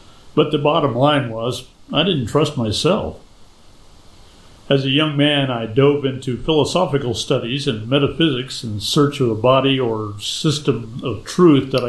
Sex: male